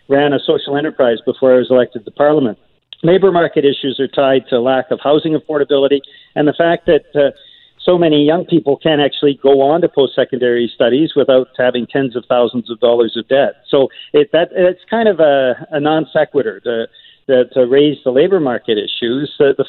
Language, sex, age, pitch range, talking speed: English, male, 50-69, 135-175 Hz, 185 wpm